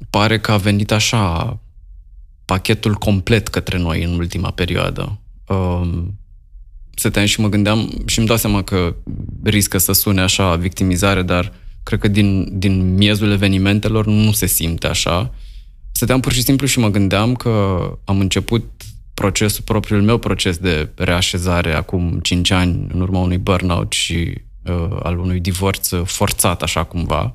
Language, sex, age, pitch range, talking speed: Romanian, male, 20-39, 90-105 Hz, 145 wpm